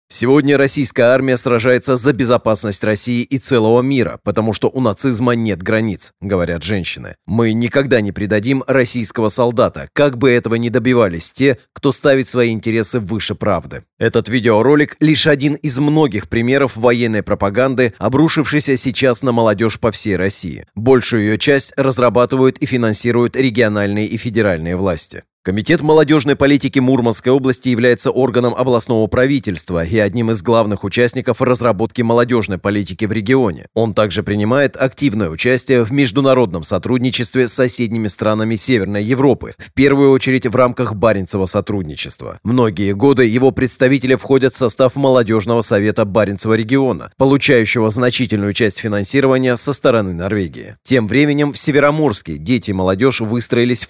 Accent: native